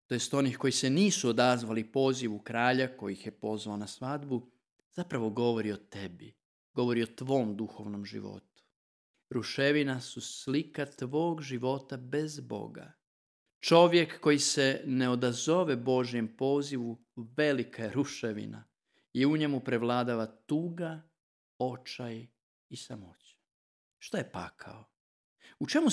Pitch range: 115-150 Hz